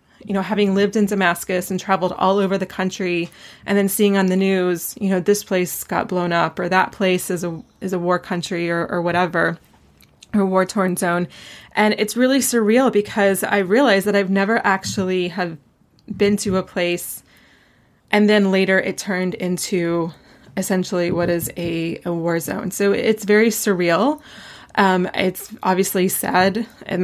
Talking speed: 175 wpm